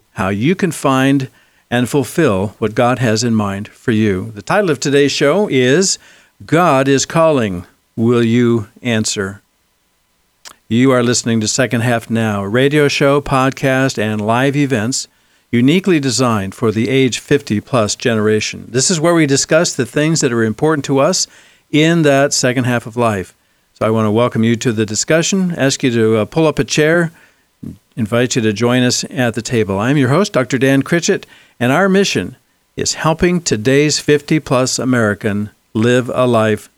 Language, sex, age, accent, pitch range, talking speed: English, male, 60-79, American, 115-145 Hz, 170 wpm